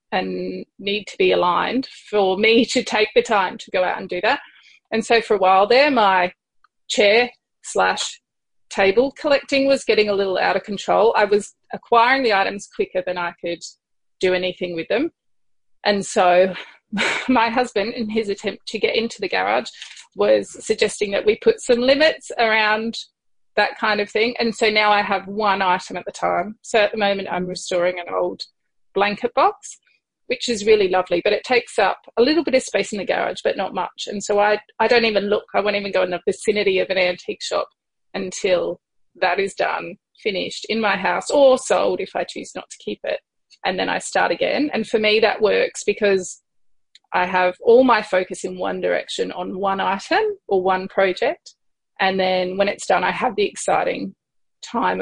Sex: female